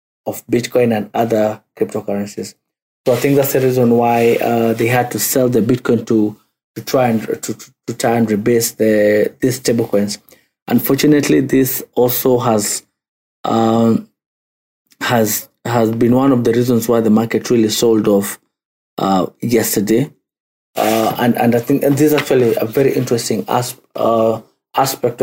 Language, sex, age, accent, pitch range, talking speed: English, male, 30-49, South African, 110-125 Hz, 160 wpm